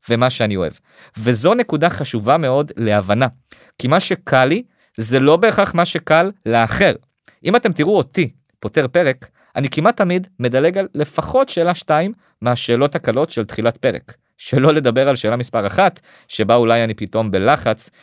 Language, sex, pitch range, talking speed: Hebrew, male, 115-170 Hz, 160 wpm